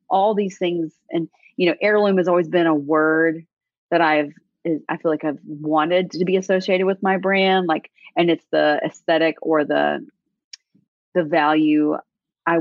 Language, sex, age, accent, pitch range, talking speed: English, female, 30-49, American, 155-190 Hz, 165 wpm